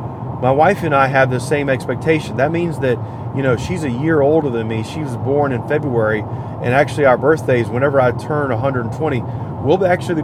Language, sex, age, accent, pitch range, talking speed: English, male, 30-49, American, 120-140 Hz, 200 wpm